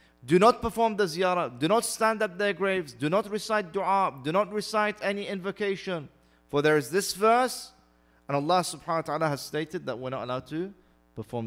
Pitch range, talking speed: 125-190 Hz, 200 wpm